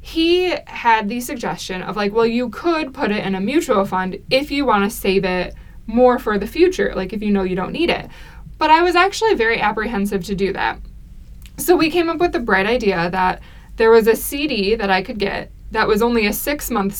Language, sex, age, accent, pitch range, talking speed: English, female, 20-39, American, 195-260 Hz, 230 wpm